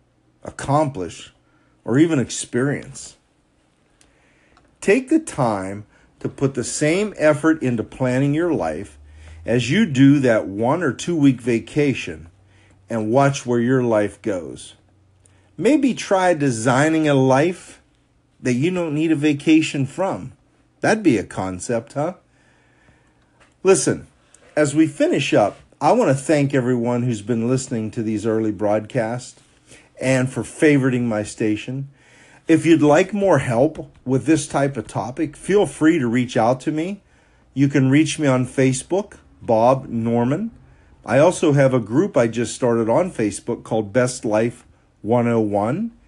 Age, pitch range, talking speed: 50-69, 115-145 Hz, 140 wpm